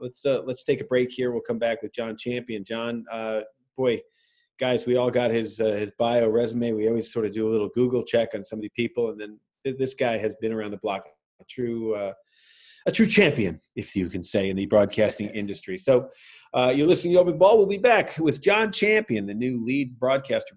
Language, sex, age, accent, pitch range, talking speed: English, male, 40-59, American, 115-170 Hz, 230 wpm